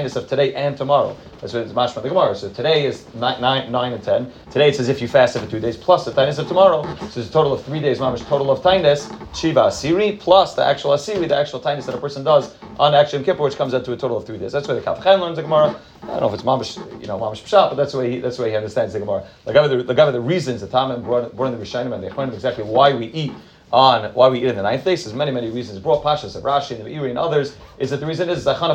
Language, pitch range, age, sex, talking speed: English, 125-160 Hz, 30-49, male, 310 wpm